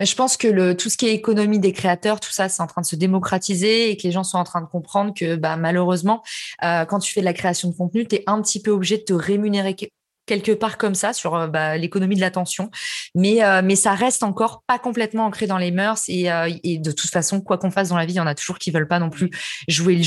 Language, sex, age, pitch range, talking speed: French, female, 20-39, 180-220 Hz, 280 wpm